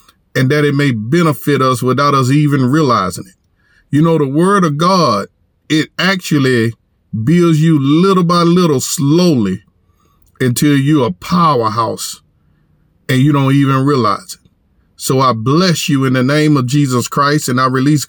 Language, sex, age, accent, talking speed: English, male, 50-69, American, 160 wpm